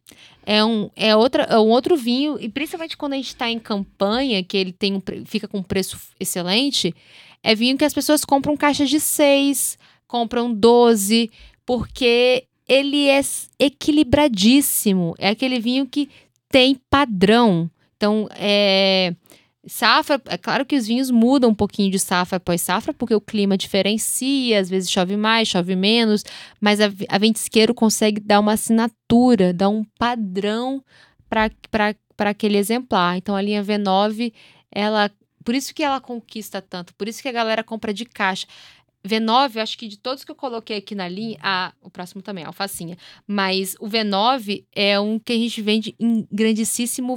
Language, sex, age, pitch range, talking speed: Portuguese, female, 10-29, 200-250 Hz, 170 wpm